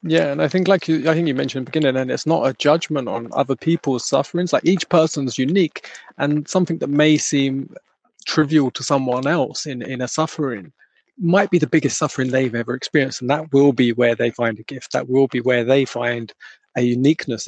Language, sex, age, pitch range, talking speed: English, male, 20-39, 130-165 Hz, 220 wpm